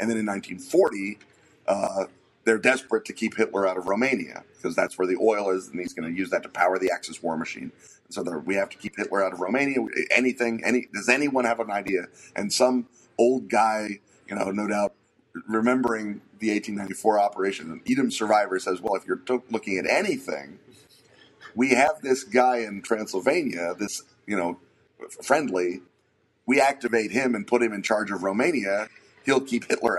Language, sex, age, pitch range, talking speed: English, male, 40-59, 100-125 Hz, 190 wpm